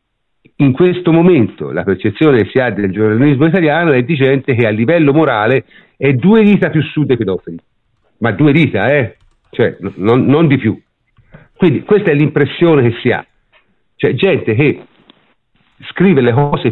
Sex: male